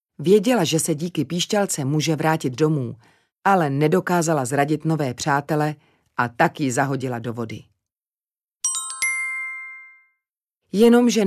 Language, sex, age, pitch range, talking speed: Czech, female, 40-59, 150-235 Hz, 100 wpm